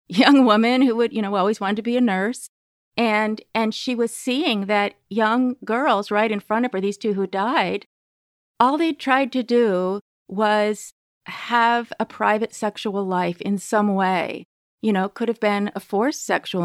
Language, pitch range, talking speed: English, 190-225 Hz, 185 wpm